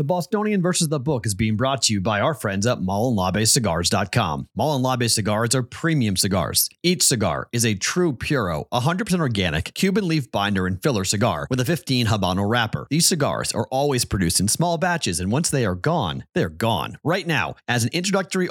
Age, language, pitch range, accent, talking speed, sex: 30-49, English, 105-150 Hz, American, 190 wpm, male